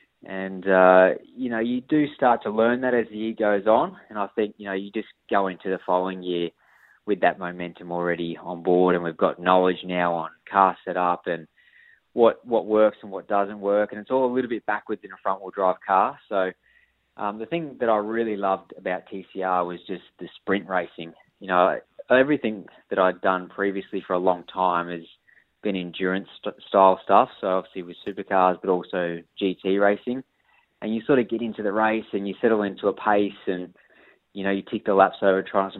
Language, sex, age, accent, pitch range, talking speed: English, male, 20-39, Australian, 90-105 Hz, 210 wpm